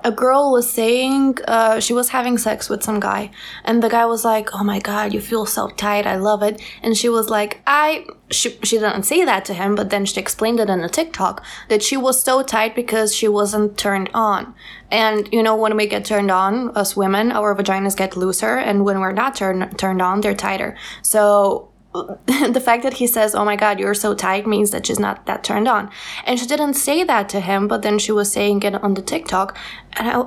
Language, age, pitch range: English, 20-39, 205-255 Hz